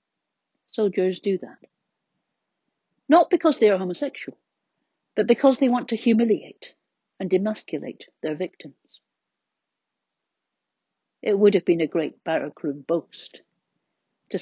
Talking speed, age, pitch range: 110 wpm, 60-79, 175-245 Hz